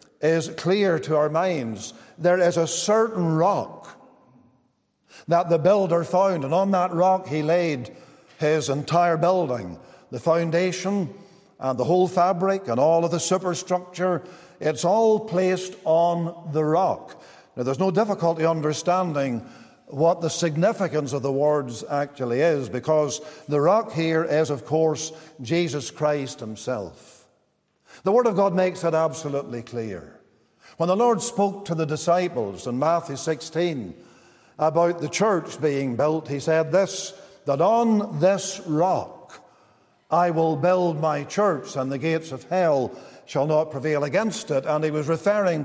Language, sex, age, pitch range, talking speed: English, male, 50-69, 150-180 Hz, 145 wpm